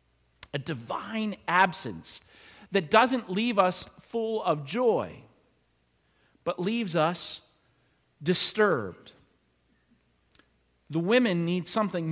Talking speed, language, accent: 90 wpm, English, American